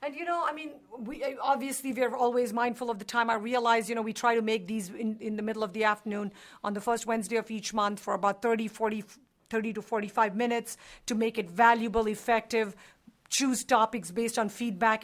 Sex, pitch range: female, 220-250 Hz